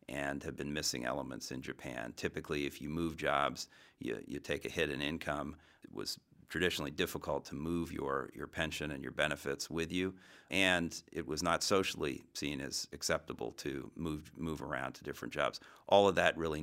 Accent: American